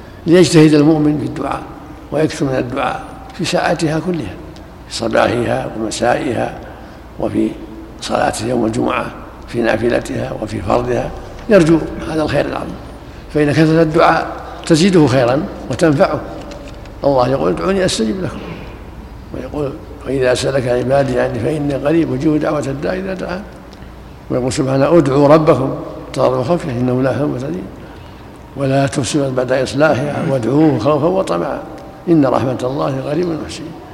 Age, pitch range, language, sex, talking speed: 60-79, 135-160 Hz, Arabic, male, 120 wpm